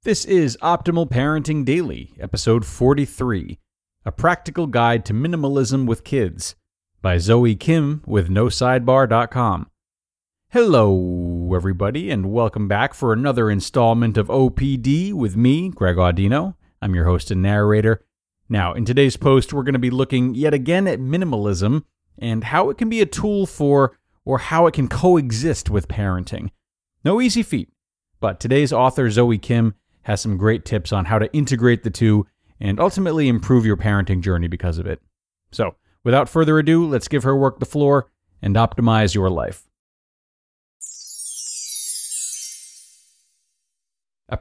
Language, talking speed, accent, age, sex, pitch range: English, 145 wpm, American, 30-49, male, 95-135 Hz